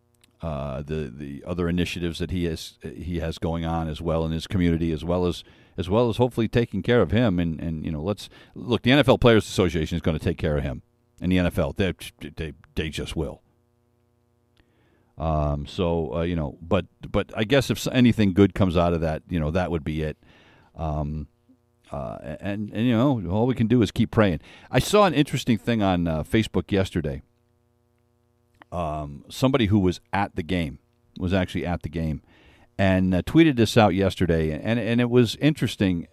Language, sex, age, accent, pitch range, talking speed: English, male, 50-69, American, 85-120 Hz, 200 wpm